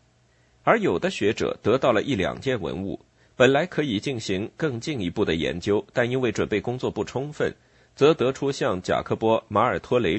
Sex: male